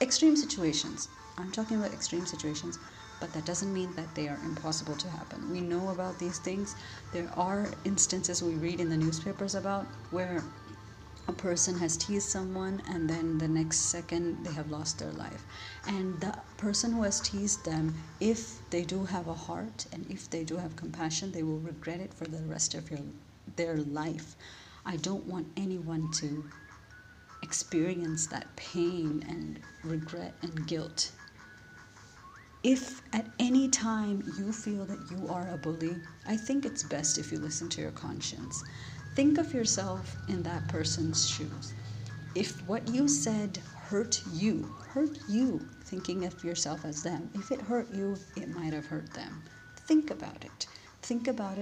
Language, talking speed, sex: English, 165 wpm, female